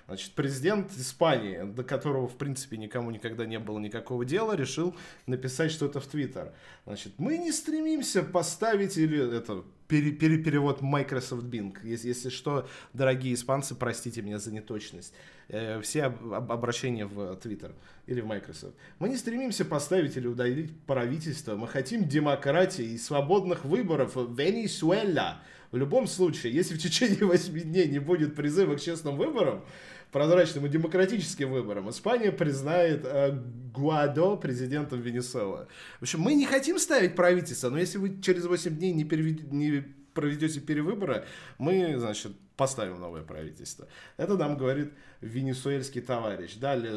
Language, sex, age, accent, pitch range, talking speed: Russian, male, 20-39, native, 125-185 Hz, 140 wpm